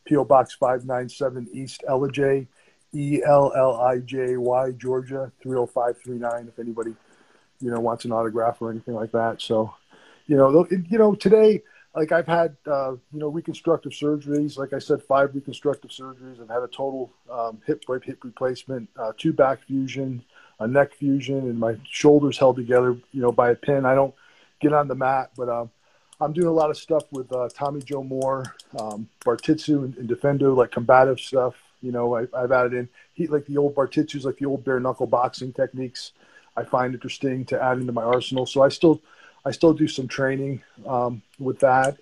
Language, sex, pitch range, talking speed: English, male, 125-140 Hz, 200 wpm